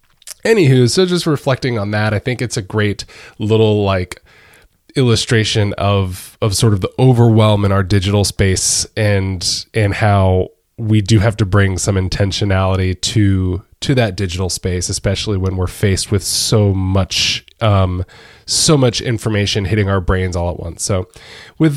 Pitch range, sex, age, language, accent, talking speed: 95-125 Hz, male, 20-39, English, American, 160 wpm